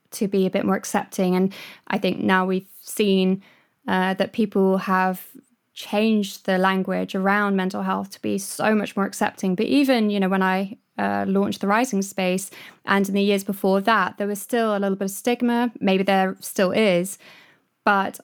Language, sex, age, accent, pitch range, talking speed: English, female, 20-39, British, 190-215 Hz, 190 wpm